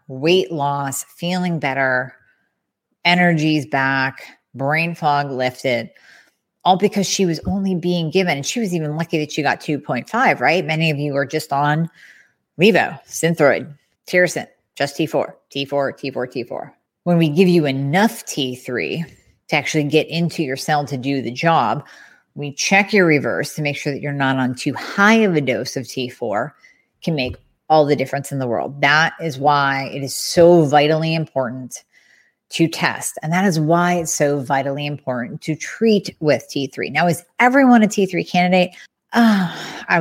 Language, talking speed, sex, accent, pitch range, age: English, 165 wpm, female, American, 140-175 Hz, 30-49